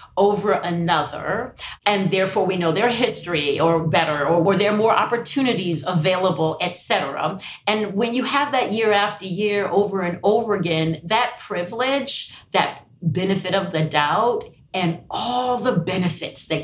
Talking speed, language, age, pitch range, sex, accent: 155 wpm, English, 40-59, 160-220 Hz, female, American